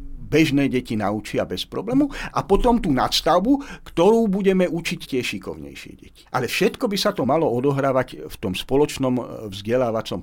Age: 50-69